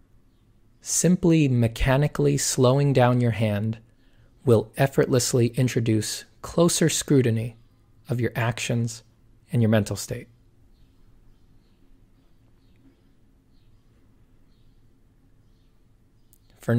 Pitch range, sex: 115-130 Hz, male